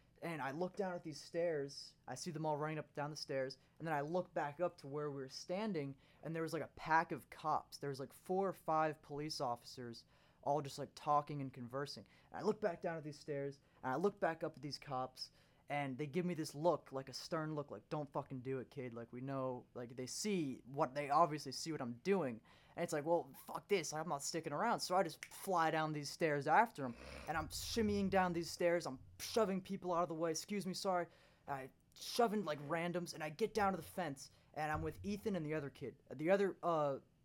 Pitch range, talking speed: 135-170 Hz, 245 wpm